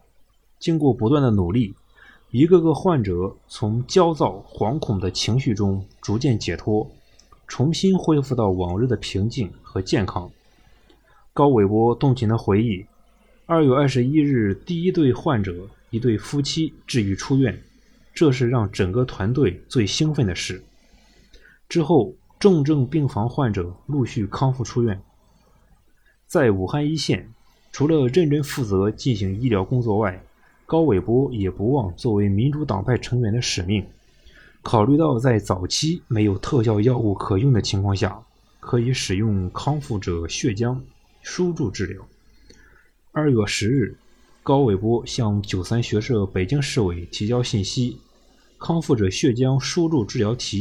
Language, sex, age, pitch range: Chinese, male, 20-39, 105-140 Hz